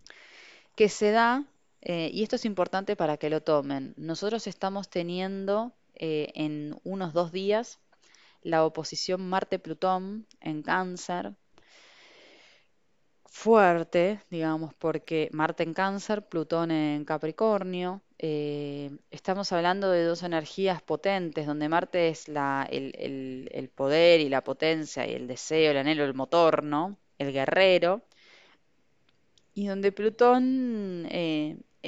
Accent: Argentinian